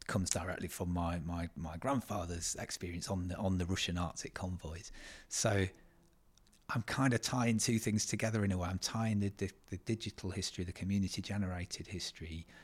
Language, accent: English, British